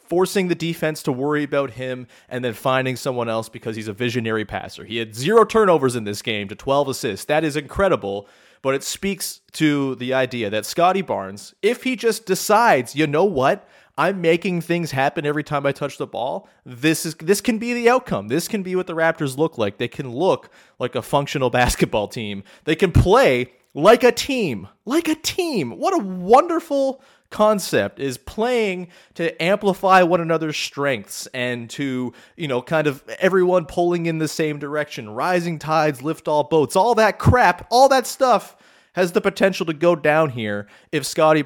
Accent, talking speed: American, 190 wpm